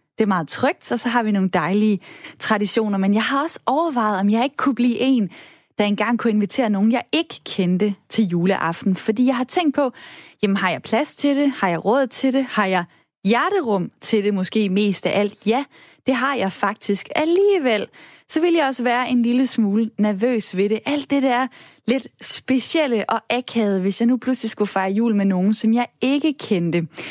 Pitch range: 200-260 Hz